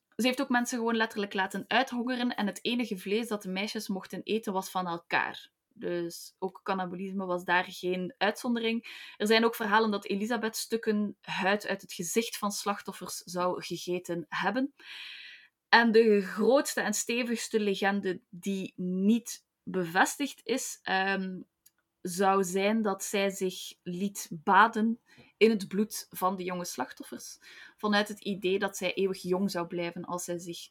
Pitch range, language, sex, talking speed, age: 185-225 Hz, Dutch, female, 155 wpm, 20-39